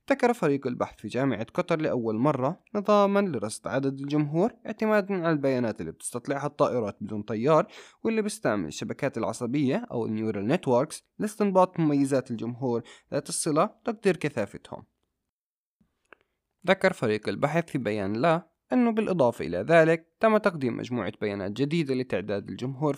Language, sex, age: Arabic, male, 20-39